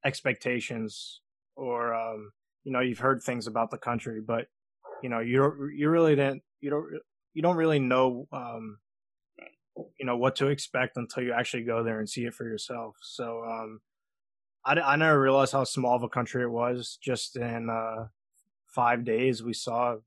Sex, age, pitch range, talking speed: male, 20-39, 115-130 Hz, 180 wpm